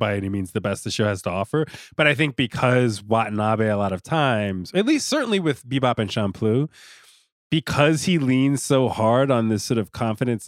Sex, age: male, 20-39